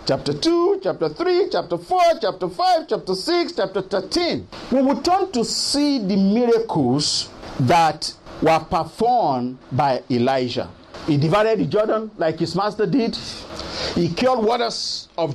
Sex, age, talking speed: male, 50-69, 140 wpm